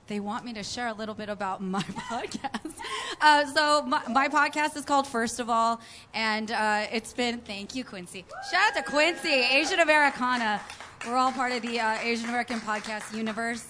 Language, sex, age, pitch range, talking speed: English, female, 20-39, 215-260 Hz, 195 wpm